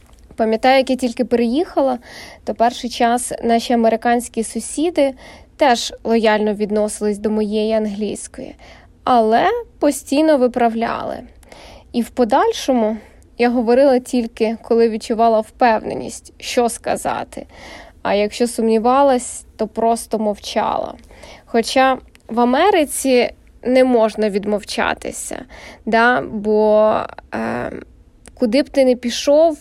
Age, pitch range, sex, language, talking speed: 20-39, 225-275 Hz, female, Ukrainian, 105 wpm